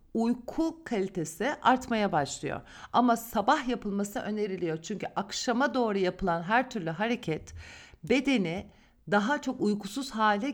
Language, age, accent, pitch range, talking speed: Turkish, 50-69, native, 175-240 Hz, 115 wpm